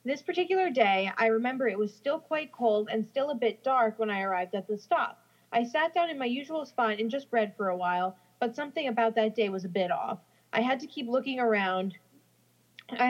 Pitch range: 205-255 Hz